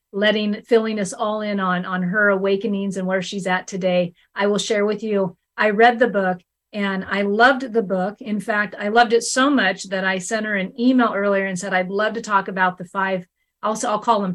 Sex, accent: female, American